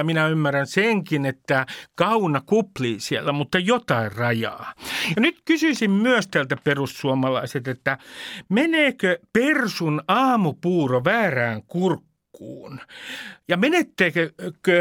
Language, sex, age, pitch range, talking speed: Finnish, male, 60-79, 145-215 Hz, 95 wpm